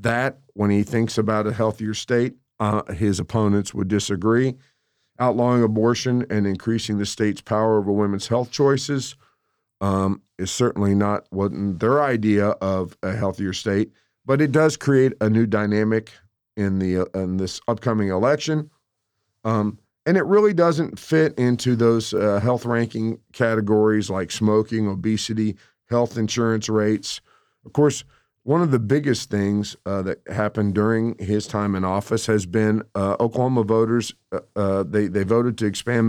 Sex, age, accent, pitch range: male, 50-69, American, 105-120 Hz